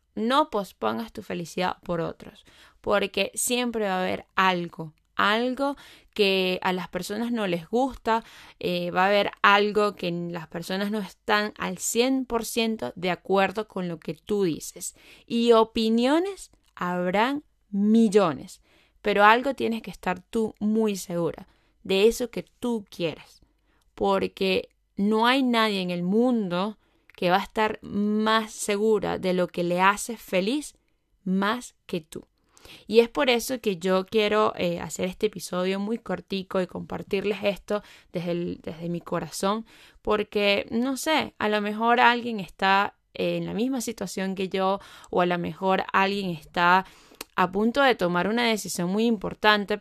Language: Spanish